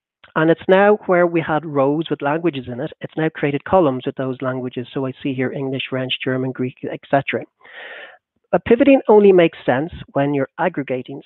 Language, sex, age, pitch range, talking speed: English, male, 40-59, 130-160 Hz, 190 wpm